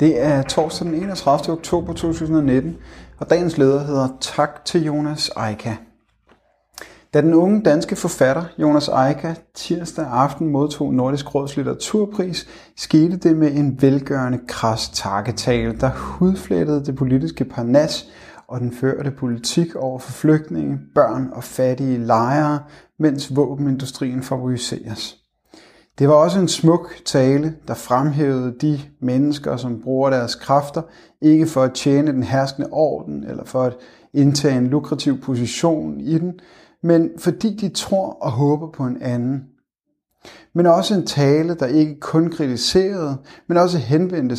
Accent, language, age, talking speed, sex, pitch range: native, Danish, 30-49, 140 wpm, male, 130-165 Hz